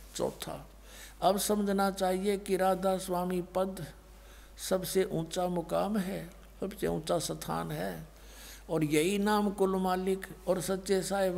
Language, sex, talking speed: Hindi, male, 125 wpm